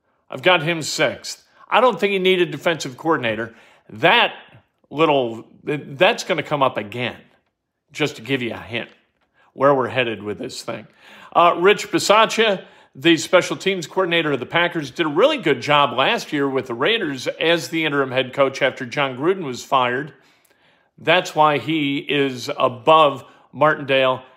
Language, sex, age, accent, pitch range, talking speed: English, male, 50-69, American, 135-185 Hz, 165 wpm